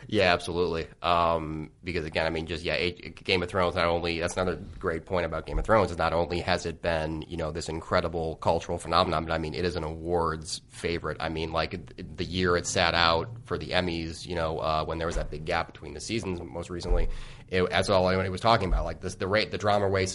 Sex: male